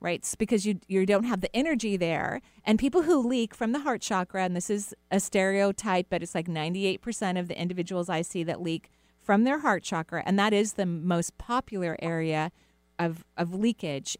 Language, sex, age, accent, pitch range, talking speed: English, female, 40-59, American, 170-225 Hz, 205 wpm